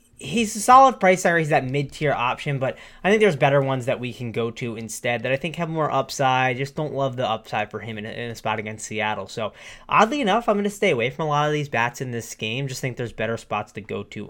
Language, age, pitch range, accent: English, 20-39, 120-145 Hz, American